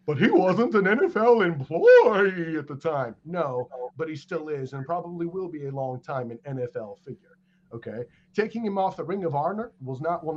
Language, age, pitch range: English, 40-59, 140-185 Hz